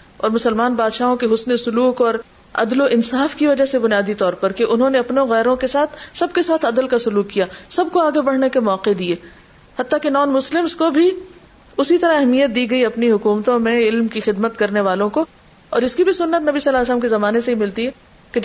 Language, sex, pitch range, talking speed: Urdu, female, 215-280 Hz, 240 wpm